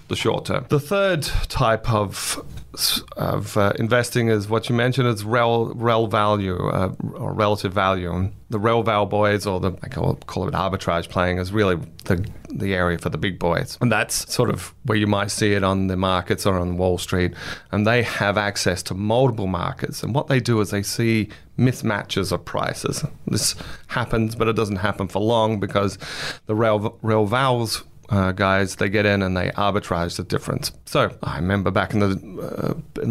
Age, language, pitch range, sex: 30-49, English, 95-115 Hz, male